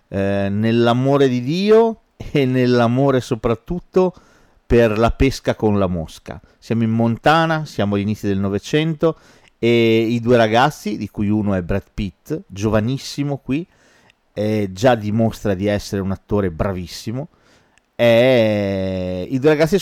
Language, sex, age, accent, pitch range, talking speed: Italian, male, 40-59, native, 100-130 Hz, 135 wpm